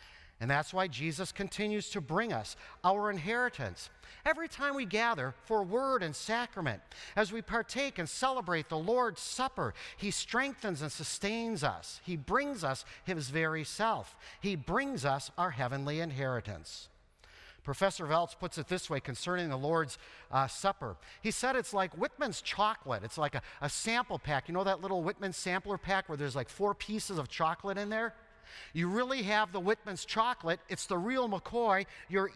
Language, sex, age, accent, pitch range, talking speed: English, male, 50-69, American, 155-225 Hz, 170 wpm